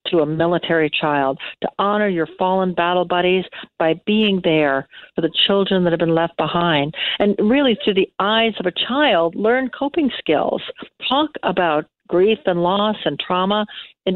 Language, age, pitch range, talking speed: English, 60-79, 170-200 Hz, 170 wpm